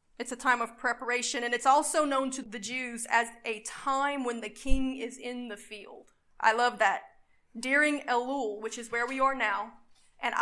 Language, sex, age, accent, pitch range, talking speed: English, female, 30-49, American, 235-270 Hz, 195 wpm